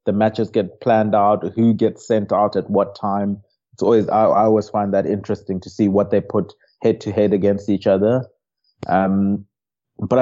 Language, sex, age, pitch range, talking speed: English, male, 30-49, 100-110 Hz, 180 wpm